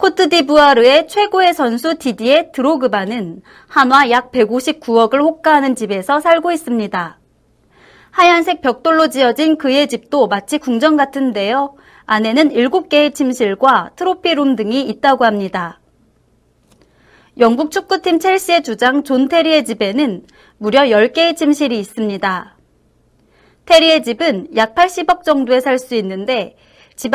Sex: female